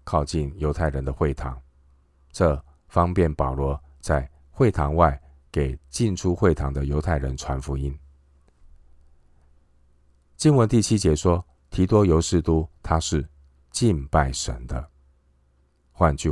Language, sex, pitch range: Chinese, male, 70-80 Hz